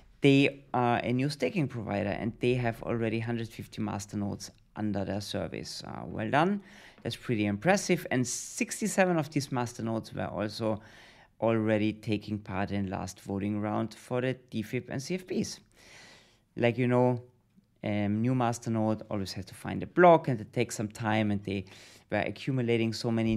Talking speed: 165 wpm